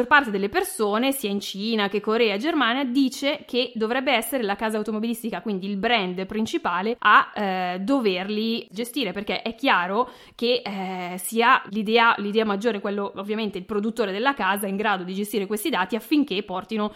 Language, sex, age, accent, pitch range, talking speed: Italian, female, 20-39, native, 200-260 Hz, 165 wpm